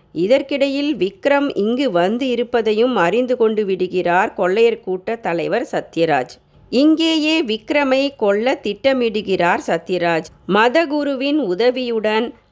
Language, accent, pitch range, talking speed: Tamil, native, 200-270 Hz, 90 wpm